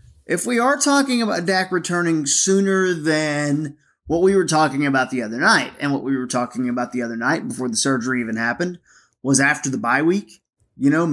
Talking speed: 205 wpm